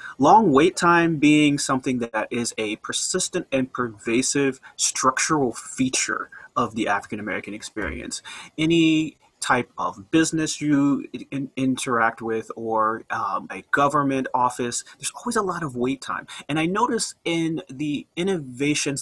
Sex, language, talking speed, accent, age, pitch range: male, English, 135 wpm, American, 30-49, 120-160 Hz